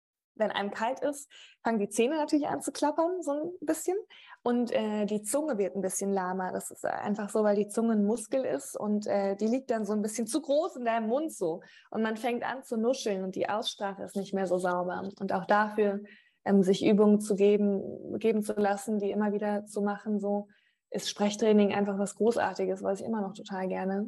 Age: 20-39